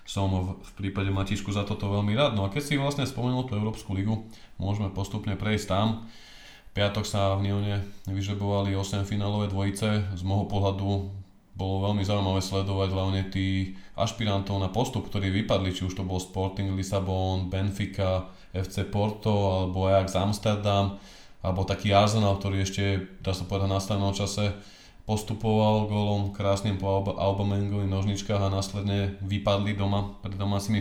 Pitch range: 95-105 Hz